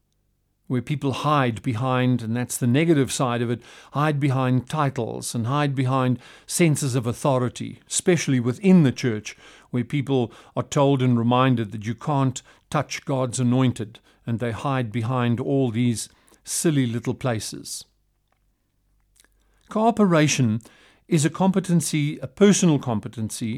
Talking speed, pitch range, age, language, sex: 130 wpm, 120-155 Hz, 50-69, English, male